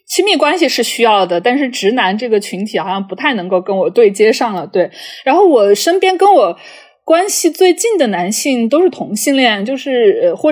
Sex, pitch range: female, 205-305 Hz